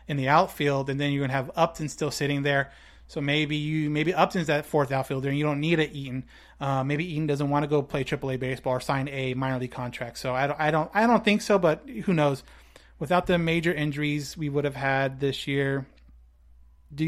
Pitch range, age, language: 140-170 Hz, 30-49, English